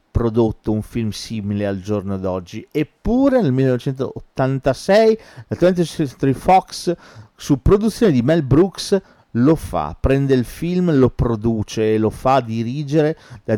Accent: native